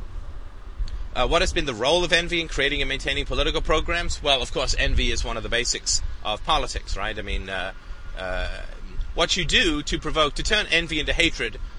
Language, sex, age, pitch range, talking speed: English, male, 30-49, 95-130 Hz, 205 wpm